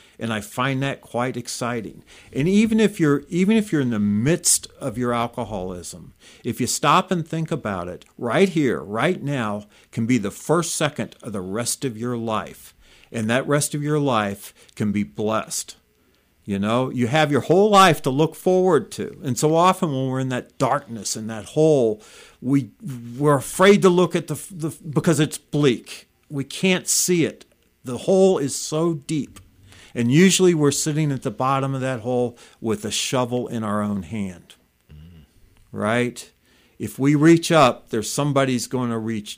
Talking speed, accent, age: 180 wpm, American, 50-69